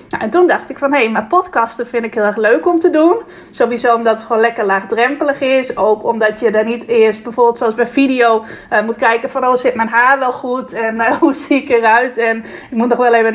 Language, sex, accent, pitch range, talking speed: Dutch, female, Dutch, 225-265 Hz, 245 wpm